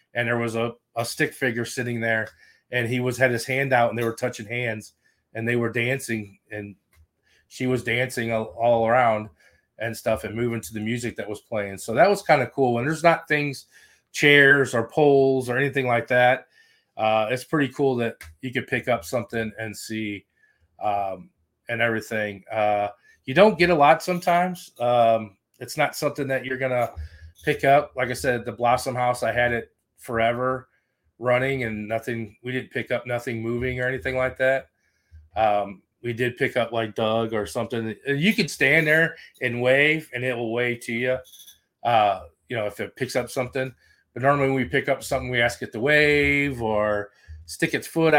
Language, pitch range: English, 110-135 Hz